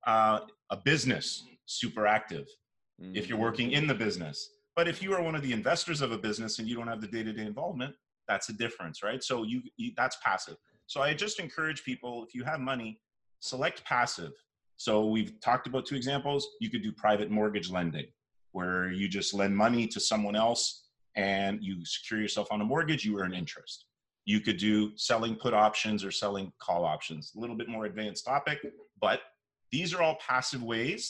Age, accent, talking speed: 30-49, American, 200 wpm